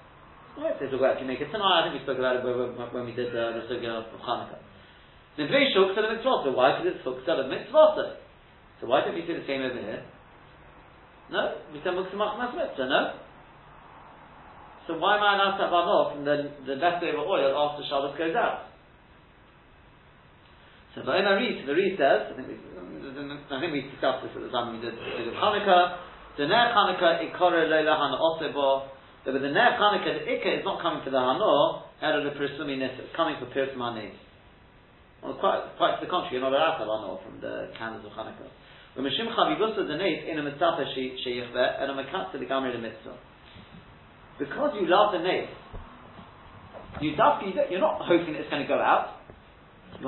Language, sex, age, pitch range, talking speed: English, male, 40-59, 135-185 Hz, 185 wpm